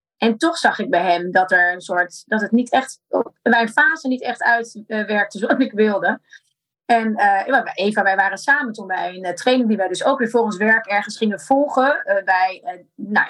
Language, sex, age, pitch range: Dutch, female, 20-39, 180-240 Hz